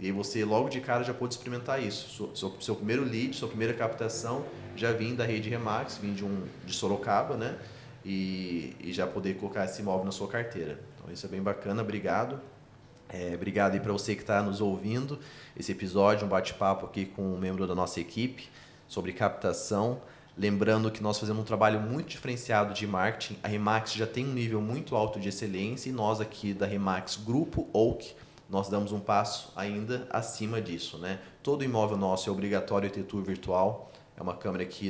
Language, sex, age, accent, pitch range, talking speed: Portuguese, male, 20-39, Brazilian, 95-120 Hz, 195 wpm